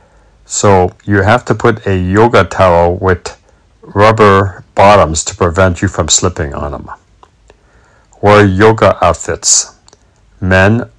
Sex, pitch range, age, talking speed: male, 85-105 Hz, 60-79, 120 wpm